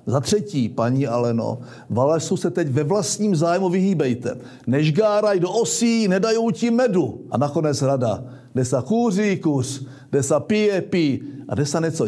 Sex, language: male, Czech